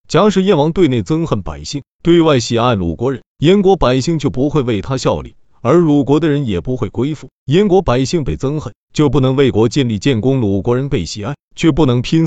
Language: Chinese